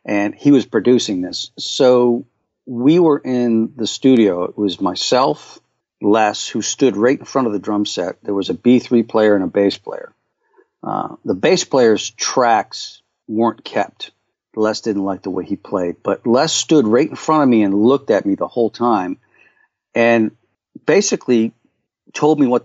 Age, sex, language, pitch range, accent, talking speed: 50-69, male, English, 105-130 Hz, American, 180 wpm